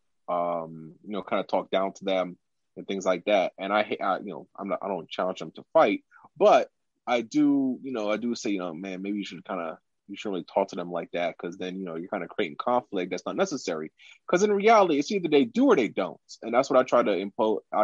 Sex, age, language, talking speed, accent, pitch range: male, 20-39, English, 265 wpm, American, 105-160 Hz